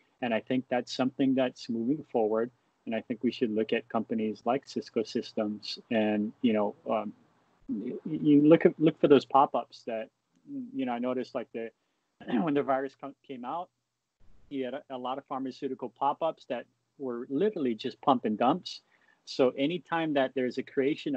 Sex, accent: male, American